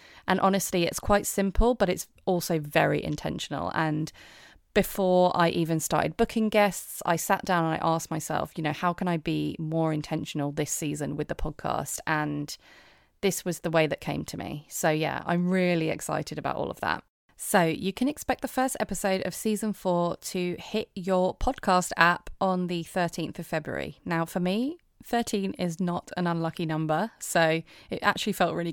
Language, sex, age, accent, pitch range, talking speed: English, female, 30-49, British, 160-195 Hz, 185 wpm